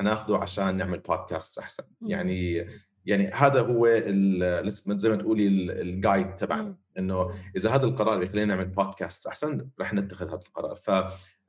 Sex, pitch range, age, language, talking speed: male, 90-110 Hz, 30-49, Arabic, 145 wpm